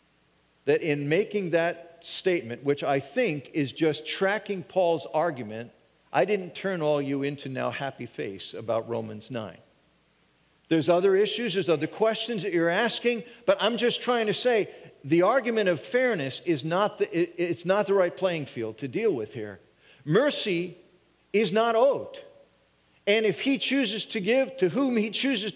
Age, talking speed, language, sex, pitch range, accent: 50-69, 160 wpm, English, male, 135-205 Hz, American